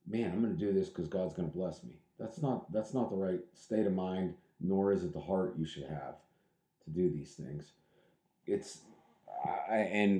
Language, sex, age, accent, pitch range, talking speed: English, male, 40-59, American, 95-135 Hz, 210 wpm